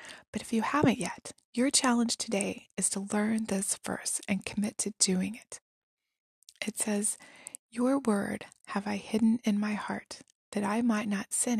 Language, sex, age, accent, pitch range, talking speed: English, female, 20-39, American, 205-245 Hz, 170 wpm